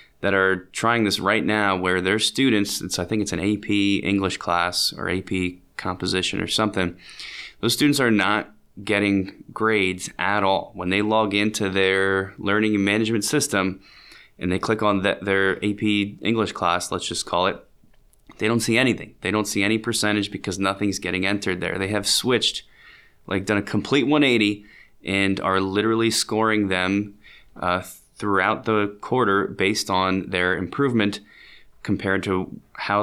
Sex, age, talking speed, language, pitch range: male, 20-39, 165 wpm, English, 90-105 Hz